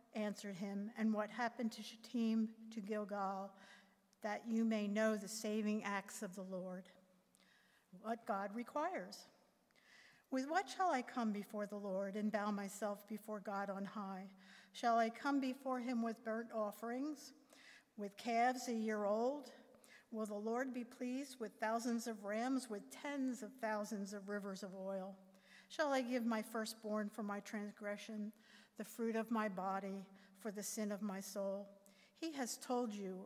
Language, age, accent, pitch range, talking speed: English, 50-69, American, 200-235 Hz, 160 wpm